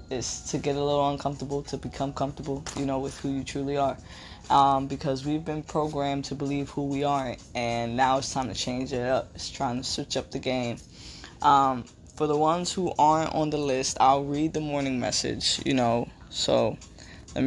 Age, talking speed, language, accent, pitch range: 10-29, 205 wpm, English, American, 130-155 Hz